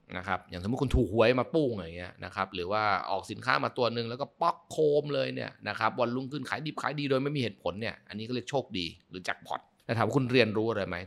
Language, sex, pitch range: Thai, male, 95-125 Hz